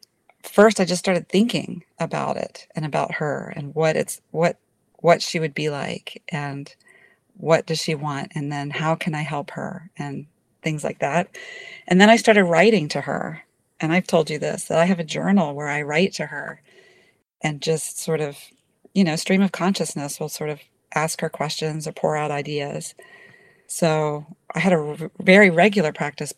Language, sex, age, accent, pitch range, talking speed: English, female, 40-59, American, 150-180 Hz, 190 wpm